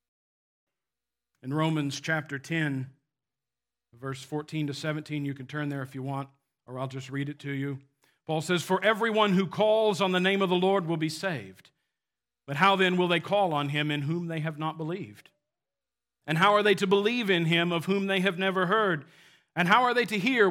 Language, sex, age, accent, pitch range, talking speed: English, male, 50-69, American, 130-180 Hz, 210 wpm